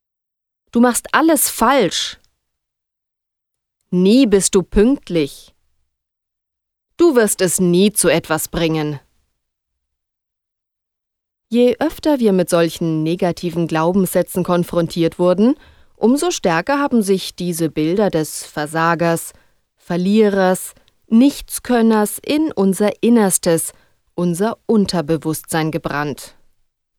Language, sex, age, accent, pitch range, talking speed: German, female, 30-49, German, 160-215 Hz, 90 wpm